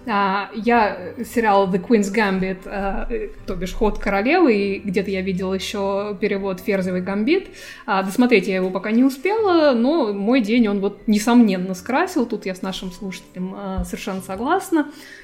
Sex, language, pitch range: female, Russian, 195-245 Hz